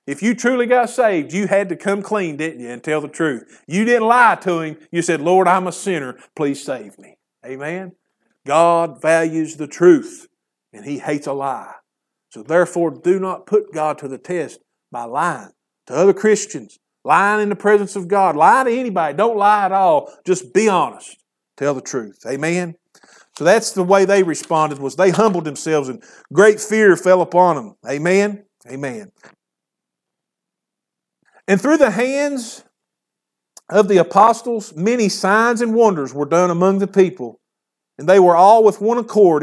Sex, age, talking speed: male, 50-69, 175 wpm